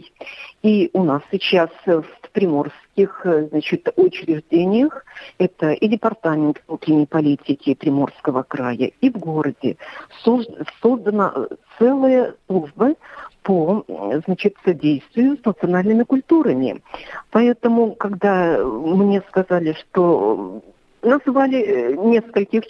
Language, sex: Russian, female